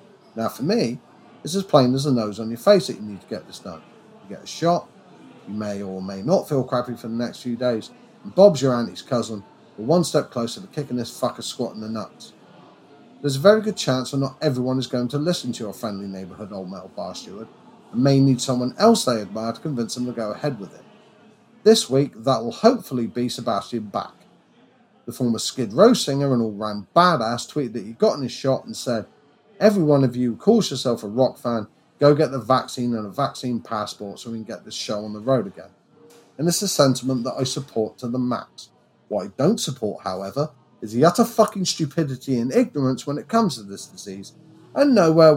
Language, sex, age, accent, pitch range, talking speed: English, male, 40-59, British, 115-155 Hz, 225 wpm